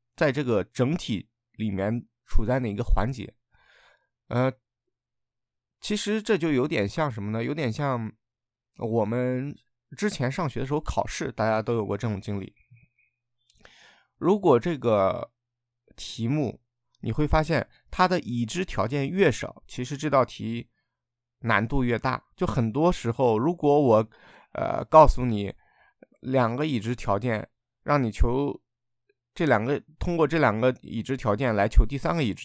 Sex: male